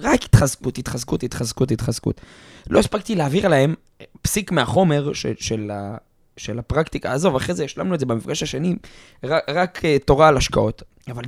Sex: male